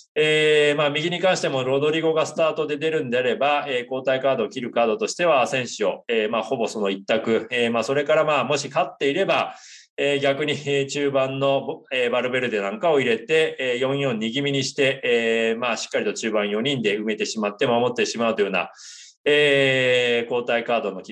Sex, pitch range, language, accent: male, 120-155 Hz, Japanese, native